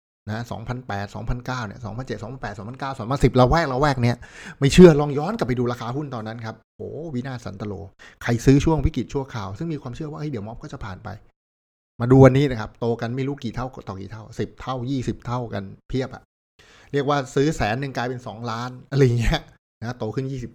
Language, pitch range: Thai, 105-135 Hz